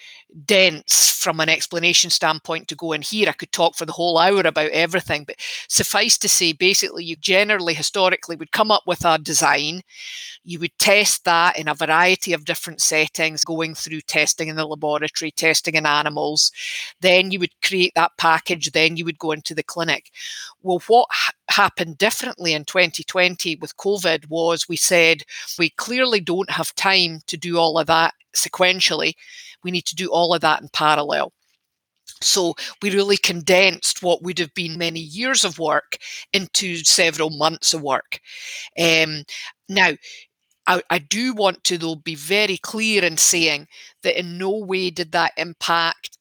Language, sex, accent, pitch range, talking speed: English, female, British, 160-185 Hz, 170 wpm